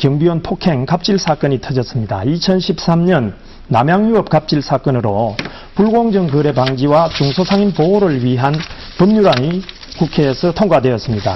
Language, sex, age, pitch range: Korean, male, 40-59, 130-185 Hz